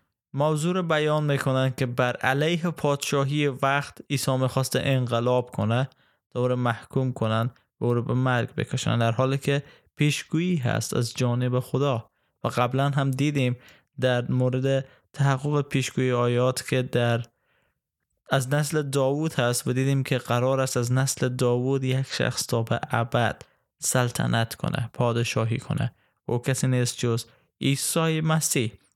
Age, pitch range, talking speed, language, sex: 20-39, 125-150 Hz, 135 wpm, Persian, male